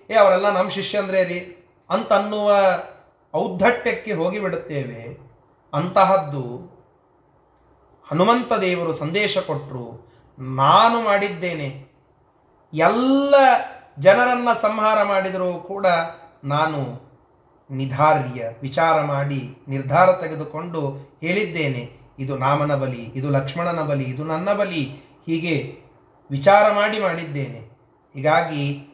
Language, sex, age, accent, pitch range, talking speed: Kannada, male, 30-49, native, 145-210 Hz, 80 wpm